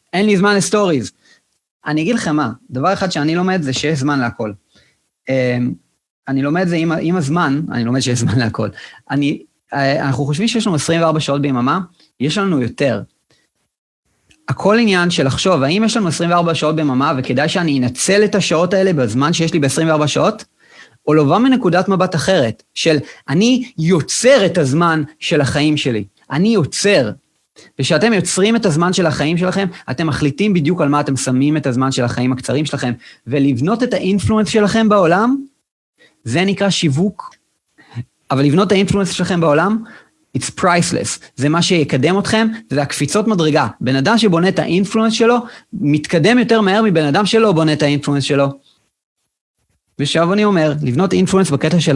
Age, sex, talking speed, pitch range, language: 30-49, male, 160 wpm, 140-195 Hz, Hebrew